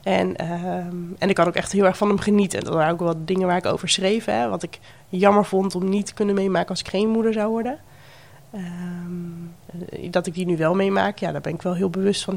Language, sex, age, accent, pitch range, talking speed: English, female, 20-39, Dutch, 170-210 Hz, 255 wpm